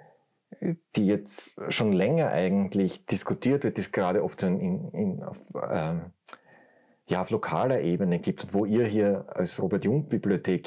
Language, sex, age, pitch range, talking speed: German, male, 30-49, 95-120 Hz, 140 wpm